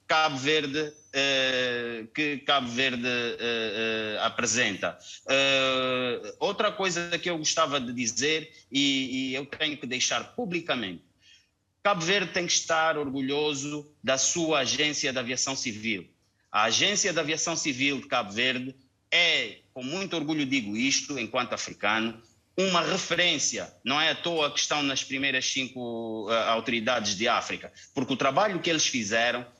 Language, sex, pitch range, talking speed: Portuguese, male, 125-165 Hz, 135 wpm